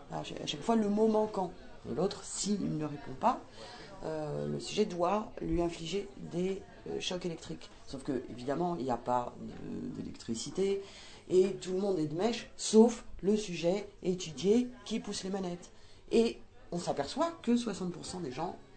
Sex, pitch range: female, 160-215 Hz